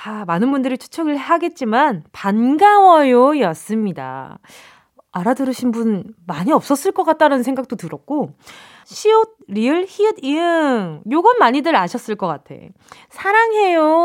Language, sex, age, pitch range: Korean, female, 20-39, 210-340 Hz